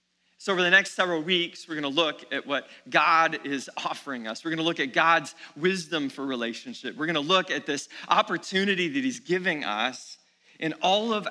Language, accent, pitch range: English, American, 150-205 Hz